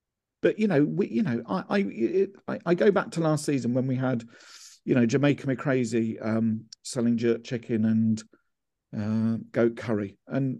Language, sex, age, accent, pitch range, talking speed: English, male, 50-69, British, 115-140 Hz, 180 wpm